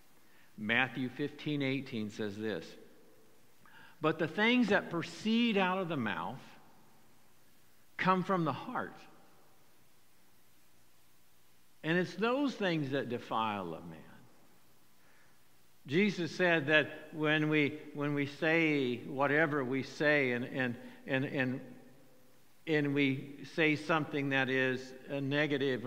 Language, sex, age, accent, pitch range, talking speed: English, male, 60-79, American, 135-185 Hz, 115 wpm